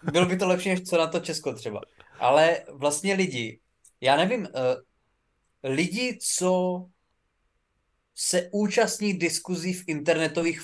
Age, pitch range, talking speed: 20-39, 150-185 Hz, 130 wpm